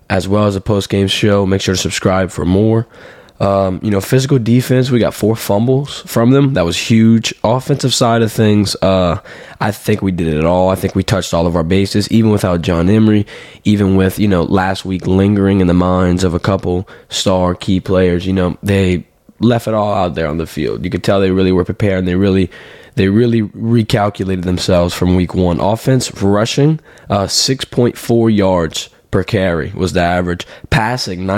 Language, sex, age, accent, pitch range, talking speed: English, male, 20-39, American, 90-110 Hz, 200 wpm